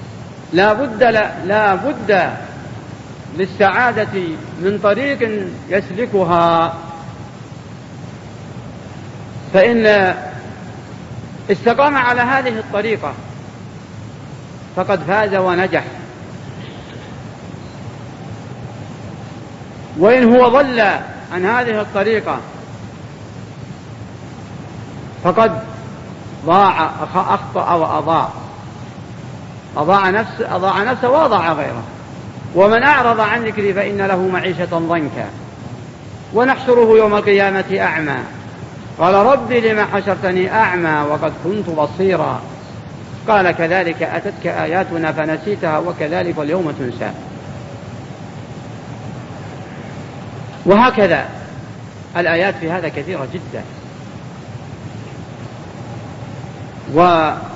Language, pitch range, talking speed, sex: Arabic, 145-205 Hz, 70 wpm, male